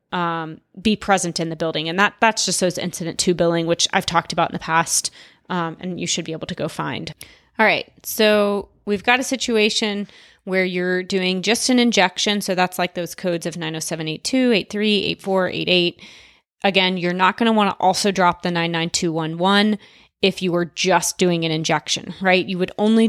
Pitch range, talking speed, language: 175-200 Hz, 195 wpm, English